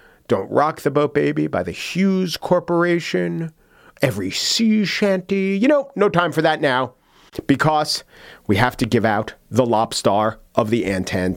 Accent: American